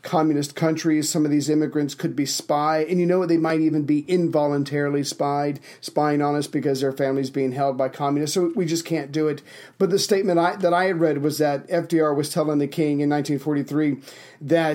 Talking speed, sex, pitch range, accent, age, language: 210 wpm, male, 145-165 Hz, American, 40-59, English